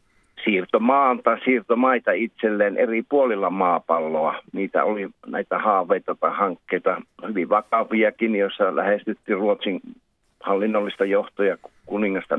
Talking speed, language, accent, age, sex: 105 wpm, Finnish, native, 60-79, male